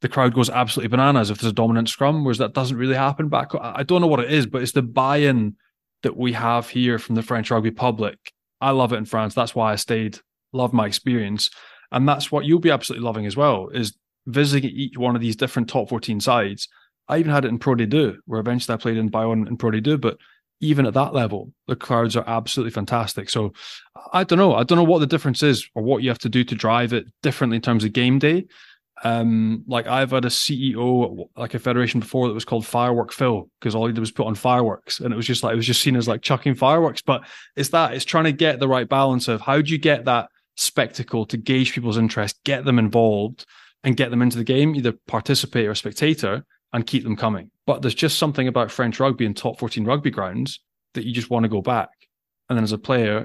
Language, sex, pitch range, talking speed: English, male, 115-135 Hz, 240 wpm